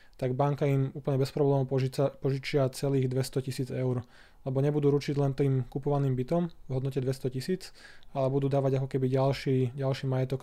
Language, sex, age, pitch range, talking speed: Slovak, male, 20-39, 130-140 Hz, 180 wpm